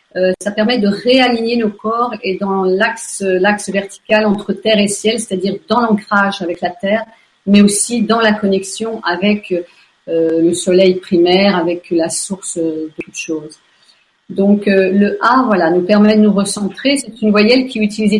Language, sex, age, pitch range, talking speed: French, female, 50-69, 190-225 Hz, 175 wpm